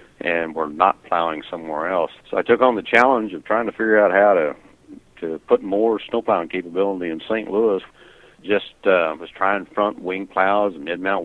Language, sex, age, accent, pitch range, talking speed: English, male, 60-79, American, 85-100 Hz, 195 wpm